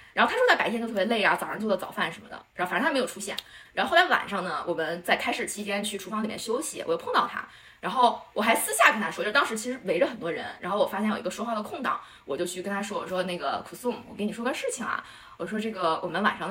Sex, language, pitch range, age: female, Chinese, 195-260 Hz, 20-39